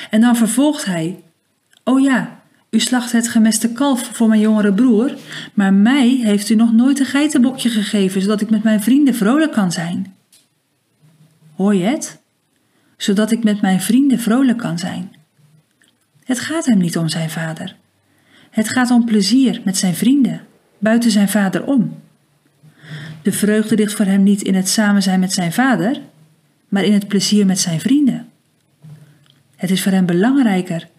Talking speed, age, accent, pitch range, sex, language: 170 wpm, 40-59, Dutch, 180-235 Hz, female, Dutch